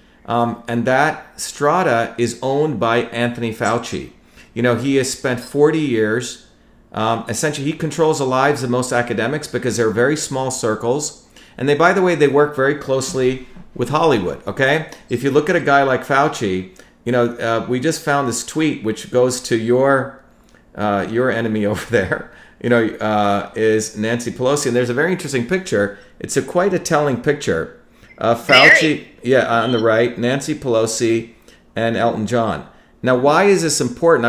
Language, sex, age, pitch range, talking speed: English, male, 40-59, 115-140 Hz, 175 wpm